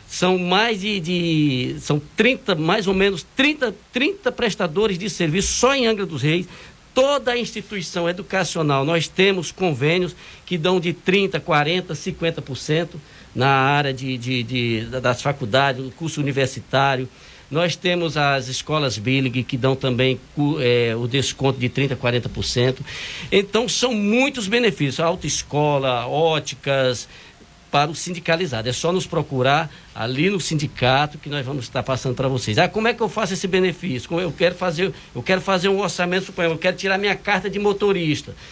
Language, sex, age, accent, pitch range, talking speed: Portuguese, male, 60-79, Brazilian, 135-185 Hz, 160 wpm